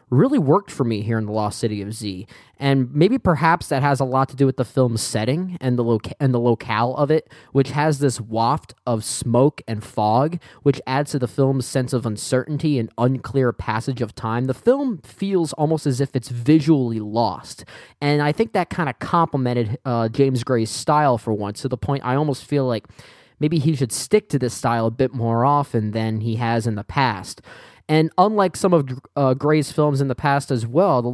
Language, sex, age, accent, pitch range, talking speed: English, male, 10-29, American, 115-155 Hz, 215 wpm